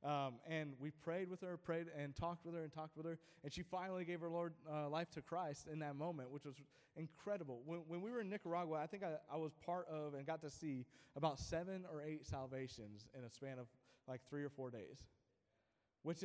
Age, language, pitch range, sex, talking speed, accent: 20-39, English, 145-180 Hz, male, 235 wpm, American